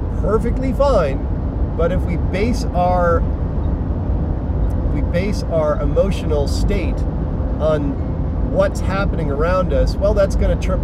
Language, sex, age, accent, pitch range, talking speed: English, male, 40-59, American, 80-90 Hz, 125 wpm